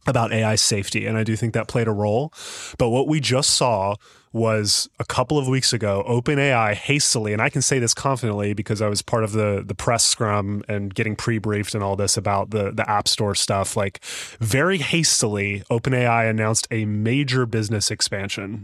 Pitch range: 105-125 Hz